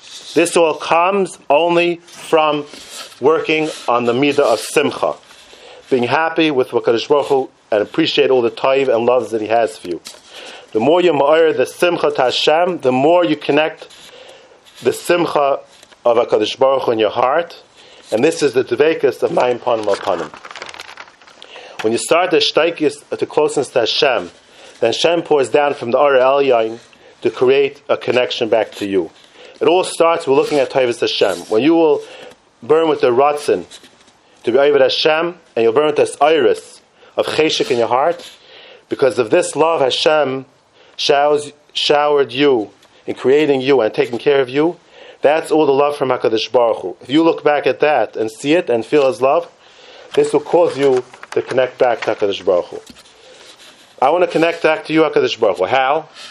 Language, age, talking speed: English, 40-59, 185 wpm